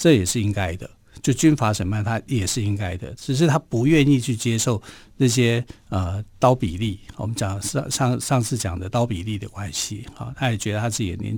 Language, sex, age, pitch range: Chinese, male, 50-69, 105-135 Hz